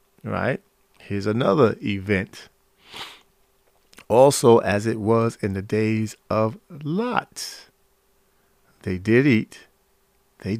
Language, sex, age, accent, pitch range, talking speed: English, male, 50-69, American, 100-115 Hz, 95 wpm